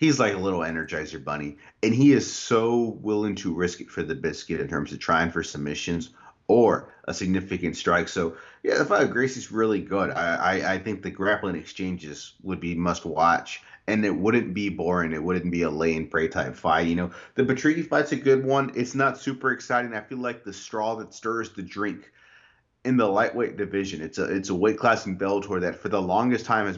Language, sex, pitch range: English, male, 90-110 Hz